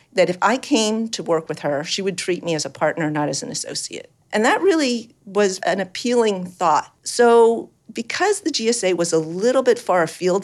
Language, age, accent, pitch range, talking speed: English, 50-69, American, 160-205 Hz, 205 wpm